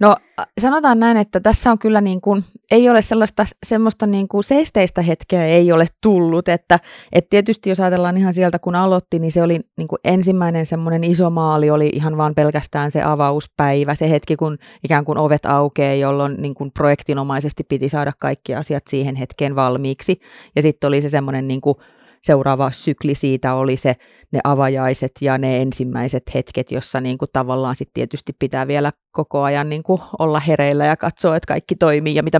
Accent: native